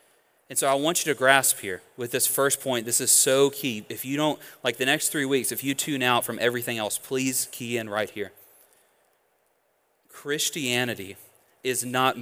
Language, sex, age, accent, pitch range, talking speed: English, male, 30-49, American, 105-130 Hz, 190 wpm